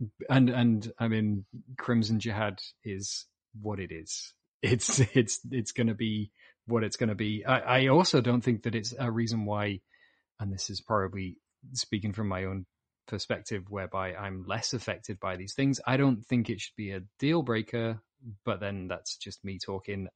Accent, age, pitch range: British, 30-49, 100-125 Hz